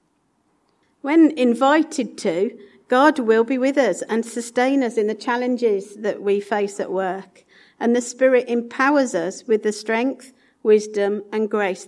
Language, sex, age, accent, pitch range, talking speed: English, female, 50-69, British, 205-255 Hz, 150 wpm